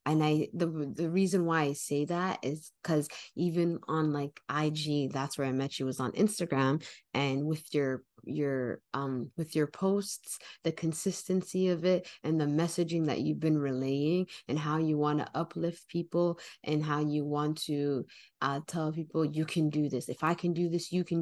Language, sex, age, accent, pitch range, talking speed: English, female, 20-39, American, 140-165 Hz, 190 wpm